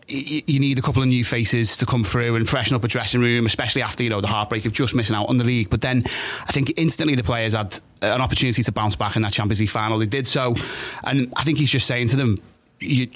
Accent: British